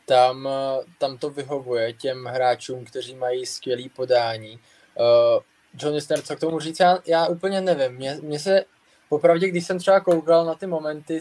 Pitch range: 130-160 Hz